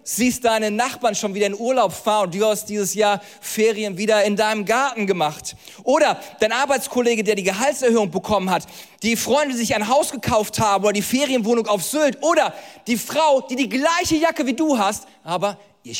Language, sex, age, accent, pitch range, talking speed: German, male, 40-59, German, 175-240 Hz, 195 wpm